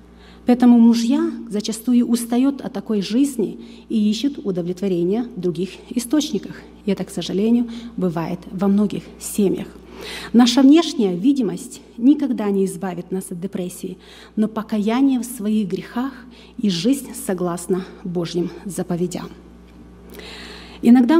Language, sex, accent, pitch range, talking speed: Russian, female, native, 195-245 Hz, 115 wpm